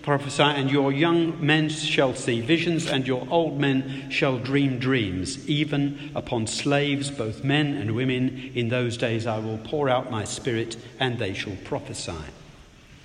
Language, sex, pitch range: English, male, 125-155 Hz